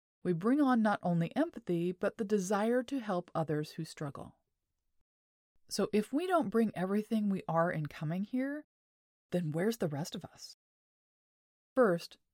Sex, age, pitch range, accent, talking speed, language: female, 30-49, 165-225 Hz, American, 155 wpm, English